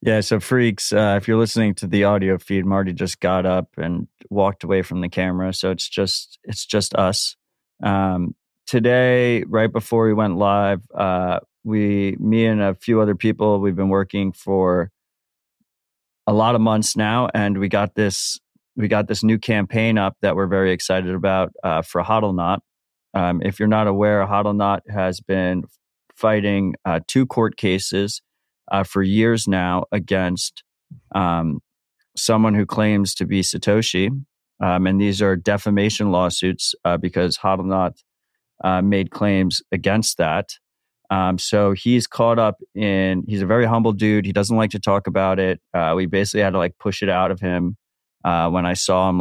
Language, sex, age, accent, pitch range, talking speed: English, male, 30-49, American, 95-105 Hz, 175 wpm